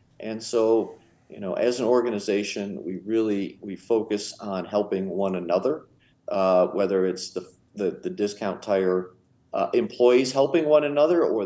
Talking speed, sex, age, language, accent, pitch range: 150 wpm, male, 50-69, English, American, 105-135 Hz